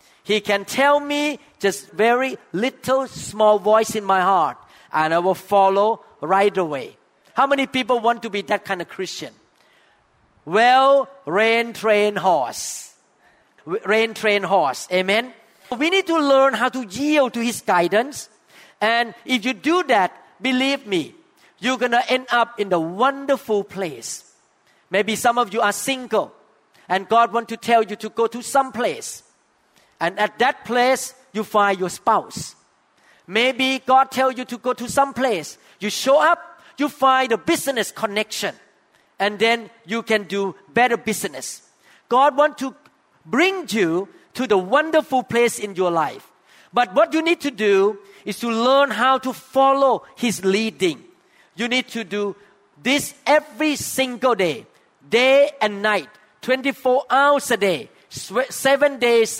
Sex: male